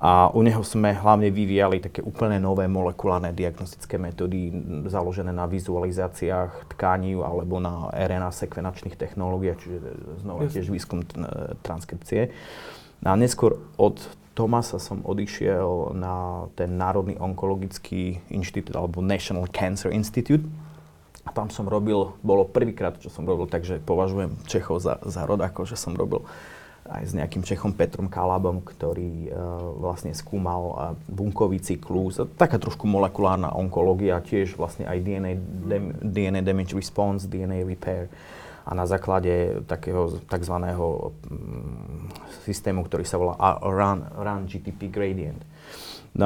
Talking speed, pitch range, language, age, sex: 135 wpm, 90-100 Hz, Slovak, 30-49, male